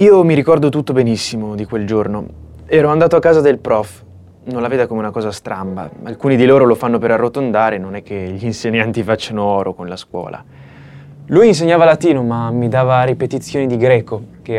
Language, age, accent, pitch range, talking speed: Italian, 20-39, native, 105-135 Hz, 200 wpm